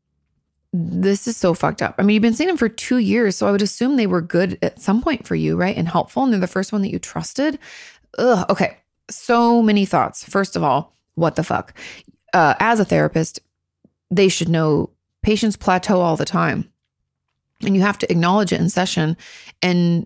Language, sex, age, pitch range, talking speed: English, female, 30-49, 175-220 Hz, 205 wpm